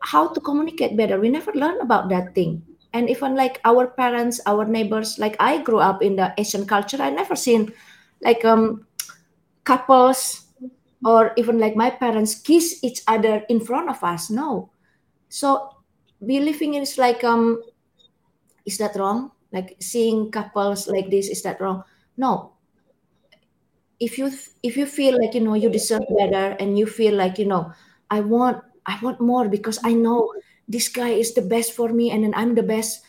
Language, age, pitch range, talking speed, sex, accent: English, 20-39, 210-255 Hz, 180 wpm, female, Indonesian